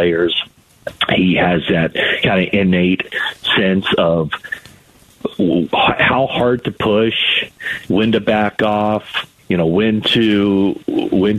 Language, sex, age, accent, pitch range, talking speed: English, male, 50-69, American, 90-105 Hz, 115 wpm